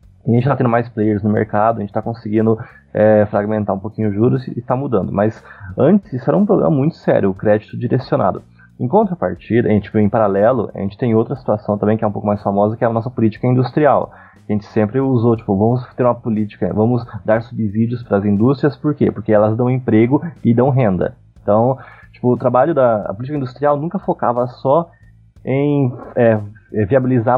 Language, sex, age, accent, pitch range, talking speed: Portuguese, male, 20-39, Brazilian, 105-140 Hz, 210 wpm